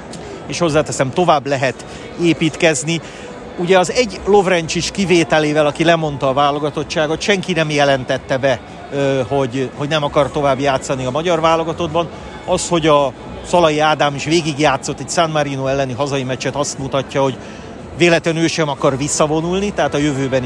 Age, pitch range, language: 40-59, 135-160 Hz, Hungarian